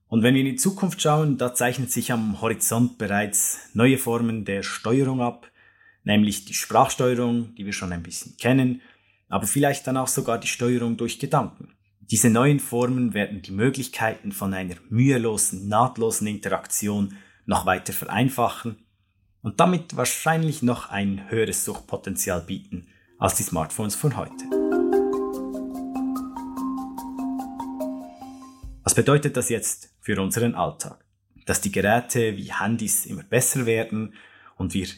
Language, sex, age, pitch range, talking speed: German, male, 20-39, 100-130 Hz, 135 wpm